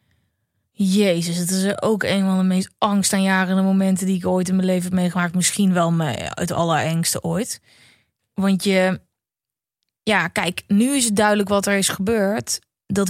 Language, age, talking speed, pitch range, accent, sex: Dutch, 20-39, 170 wpm, 180-220 Hz, Dutch, female